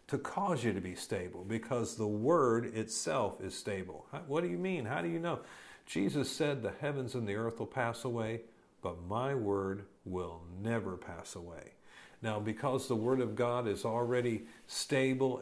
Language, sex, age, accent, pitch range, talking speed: English, male, 50-69, American, 105-125 Hz, 180 wpm